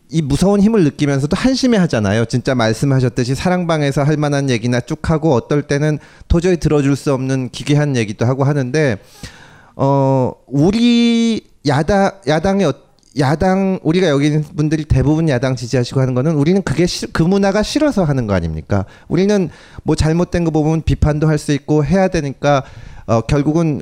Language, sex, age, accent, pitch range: Korean, male, 40-59, native, 125-170 Hz